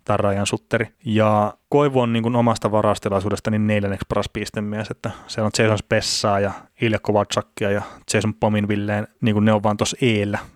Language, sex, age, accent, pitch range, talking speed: Finnish, male, 30-49, native, 105-120 Hz, 165 wpm